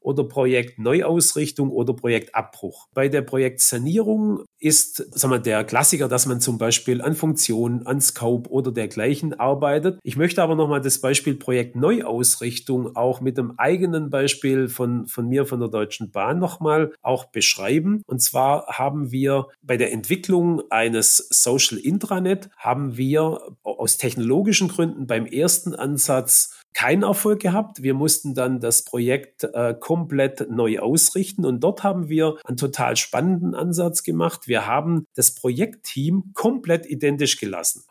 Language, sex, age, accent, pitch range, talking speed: German, male, 40-59, German, 125-170 Hz, 150 wpm